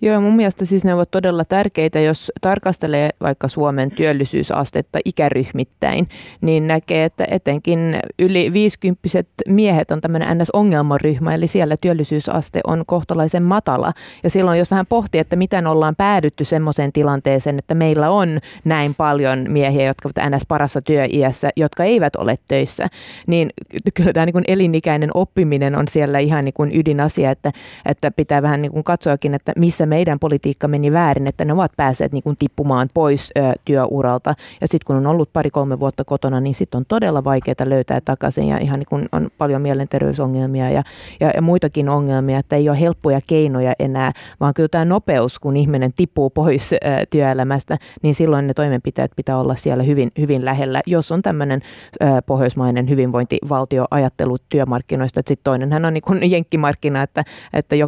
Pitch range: 135-165 Hz